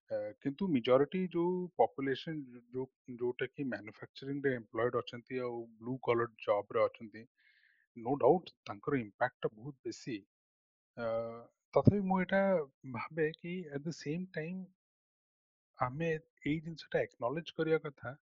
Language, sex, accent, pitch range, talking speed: Hindi, male, native, 120-165 Hz, 85 wpm